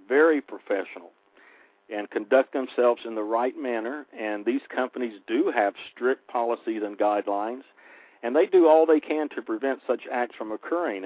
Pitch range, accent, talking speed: 105-150 Hz, American, 165 wpm